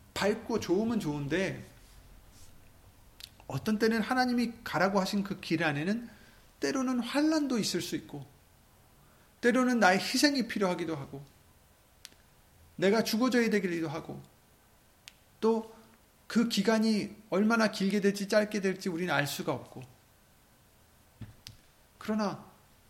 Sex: male